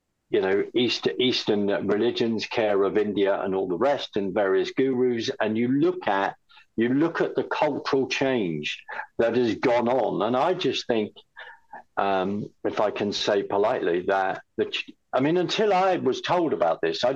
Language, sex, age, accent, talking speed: English, male, 50-69, British, 170 wpm